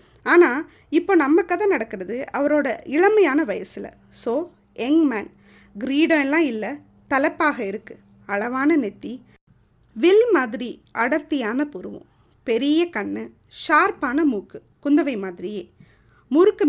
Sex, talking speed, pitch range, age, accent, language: female, 100 wpm, 235-325 Hz, 20-39, native, Tamil